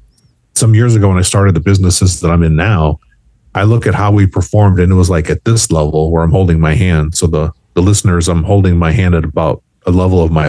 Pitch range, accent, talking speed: 85-105 Hz, American, 250 wpm